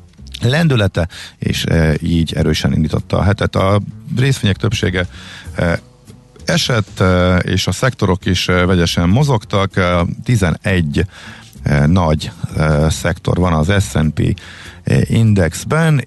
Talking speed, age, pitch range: 110 wpm, 50-69, 85-105 Hz